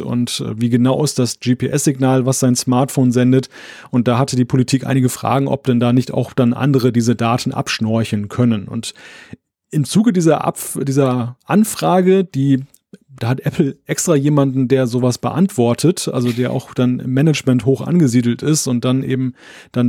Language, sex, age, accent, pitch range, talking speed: German, male, 30-49, German, 130-160 Hz, 170 wpm